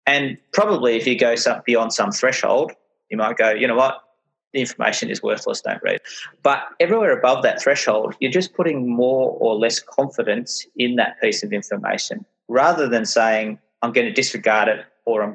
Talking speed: 185 wpm